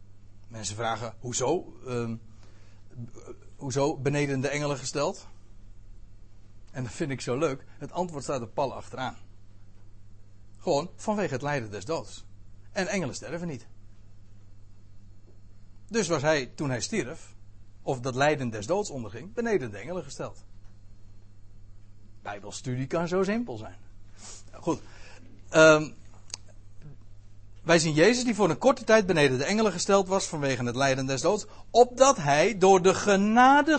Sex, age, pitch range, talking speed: male, 60-79, 100-155 Hz, 140 wpm